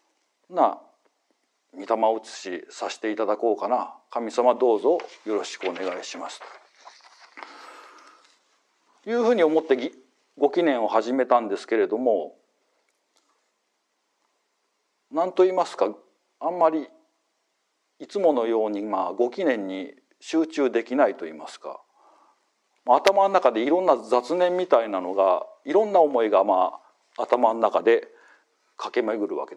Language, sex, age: Japanese, male, 50-69